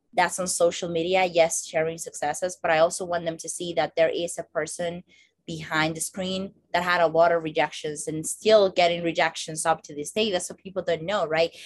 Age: 20-39